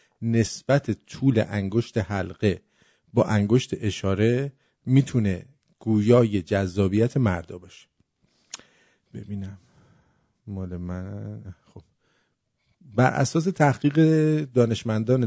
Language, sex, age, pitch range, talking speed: English, male, 50-69, 105-130 Hz, 80 wpm